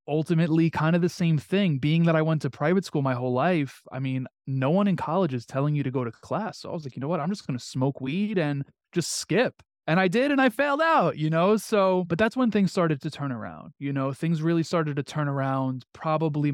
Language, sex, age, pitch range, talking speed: English, male, 20-39, 130-160 Hz, 260 wpm